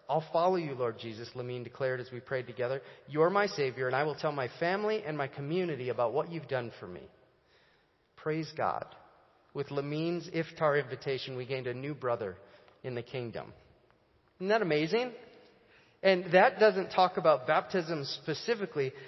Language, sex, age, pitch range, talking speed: English, male, 40-59, 130-185 Hz, 165 wpm